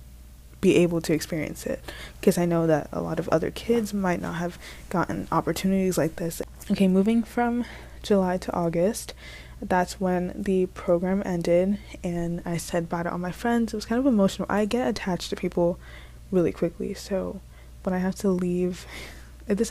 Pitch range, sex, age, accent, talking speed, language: 170-195 Hz, female, 20-39, American, 180 wpm, English